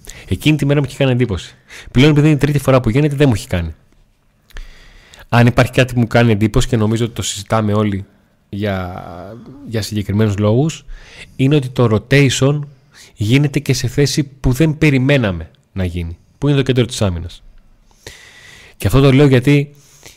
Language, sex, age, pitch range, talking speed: Greek, male, 20-39, 105-140 Hz, 180 wpm